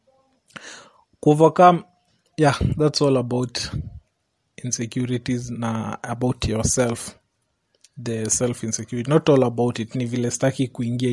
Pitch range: 125-150 Hz